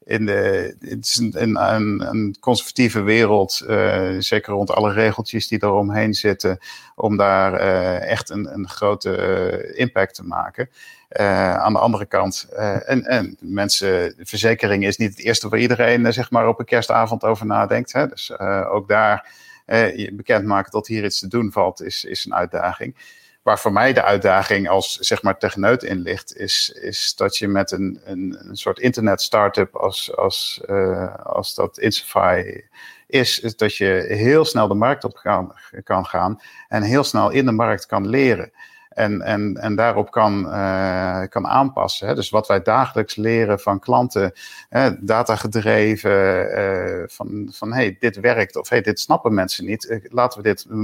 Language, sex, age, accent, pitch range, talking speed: Dutch, male, 50-69, Dutch, 100-120 Hz, 180 wpm